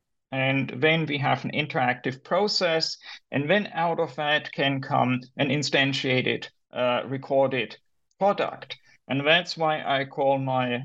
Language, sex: English, male